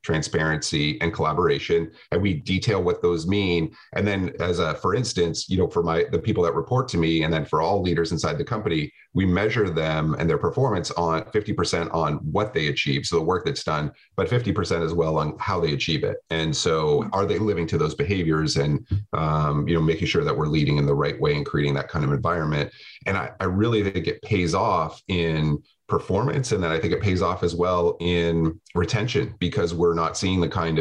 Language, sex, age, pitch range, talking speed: English, male, 30-49, 80-95 Hz, 220 wpm